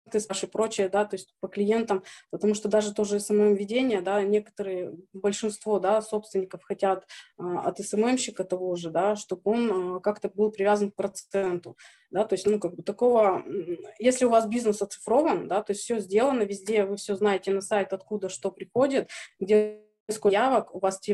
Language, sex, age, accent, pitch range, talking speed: Russian, female, 20-39, native, 185-215 Hz, 170 wpm